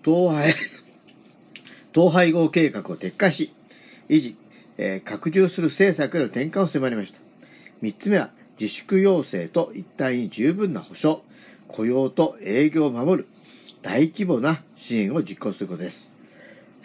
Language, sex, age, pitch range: Japanese, male, 50-69, 135-185 Hz